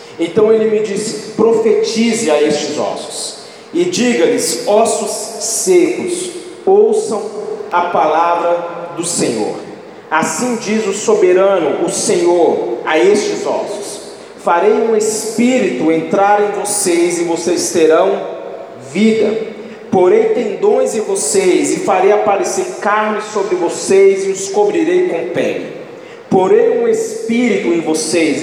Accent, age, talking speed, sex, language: Brazilian, 40-59, 120 wpm, male, Portuguese